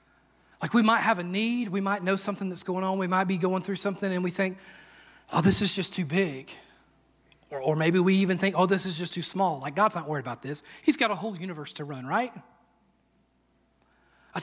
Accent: American